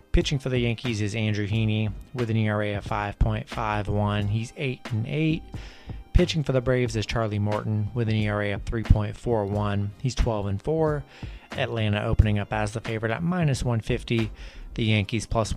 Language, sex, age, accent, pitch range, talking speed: English, male, 30-49, American, 105-120 Hz, 155 wpm